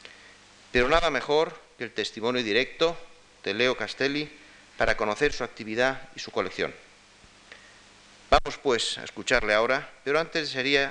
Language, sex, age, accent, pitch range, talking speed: Spanish, male, 40-59, Spanish, 105-145 Hz, 140 wpm